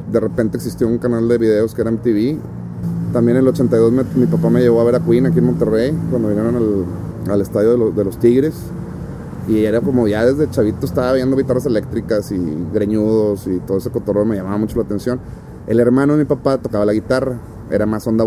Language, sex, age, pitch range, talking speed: Spanish, male, 30-49, 100-125 Hz, 225 wpm